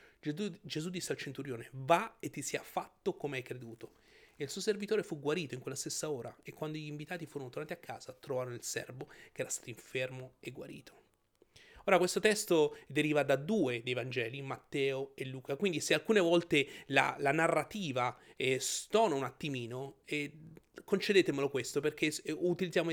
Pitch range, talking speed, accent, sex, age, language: 135-190 Hz, 175 wpm, native, male, 30-49, Italian